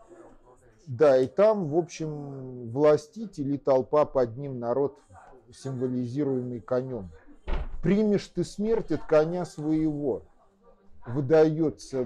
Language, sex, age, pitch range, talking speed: Russian, male, 50-69, 125-155 Hz, 95 wpm